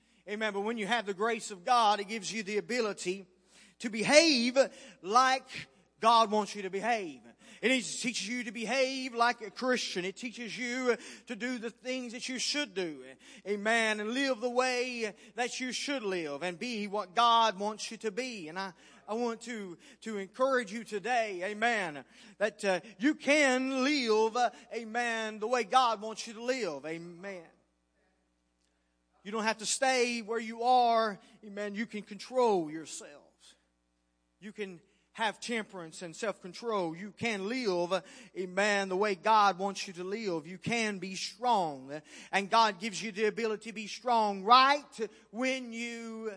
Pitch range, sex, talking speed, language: 190-235 Hz, male, 165 wpm, English